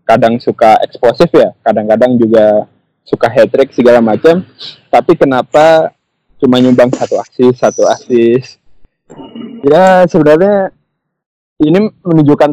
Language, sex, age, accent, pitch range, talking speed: Indonesian, male, 20-39, native, 125-155 Hz, 105 wpm